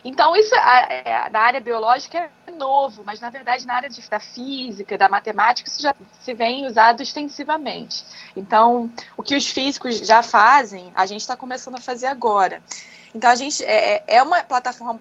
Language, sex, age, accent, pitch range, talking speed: Portuguese, female, 20-39, Brazilian, 225-290 Hz, 170 wpm